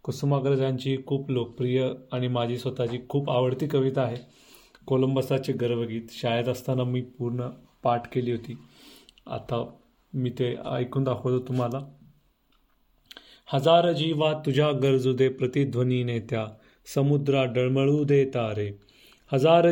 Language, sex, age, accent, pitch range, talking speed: Marathi, male, 30-49, native, 120-140 Hz, 90 wpm